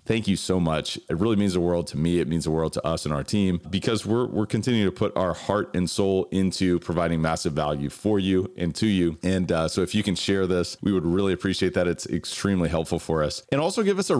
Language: English